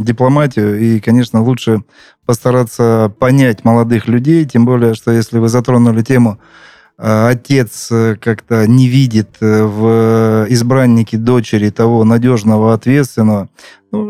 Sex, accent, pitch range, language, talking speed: male, native, 110-130 Hz, Russian, 110 wpm